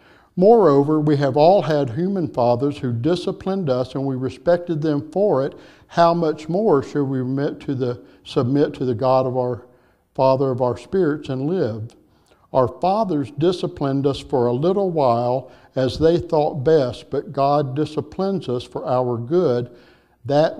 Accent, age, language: American, 60-79, English